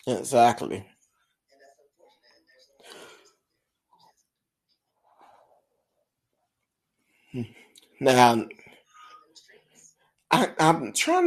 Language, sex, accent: English, male, American